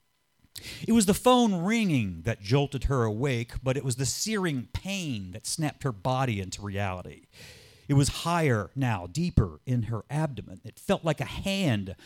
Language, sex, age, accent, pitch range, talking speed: English, male, 40-59, American, 115-165 Hz, 170 wpm